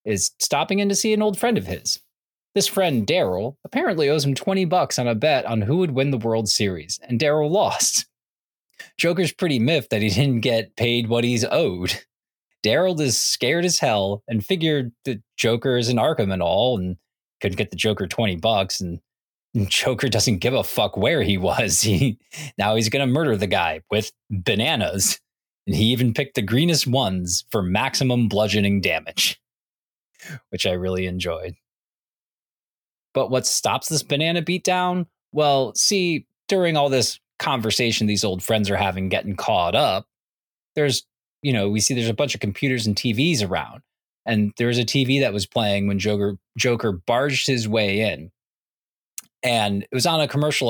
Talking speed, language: 180 wpm, English